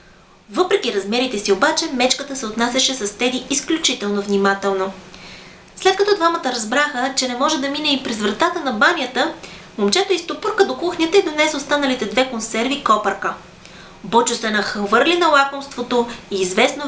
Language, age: Bulgarian, 20-39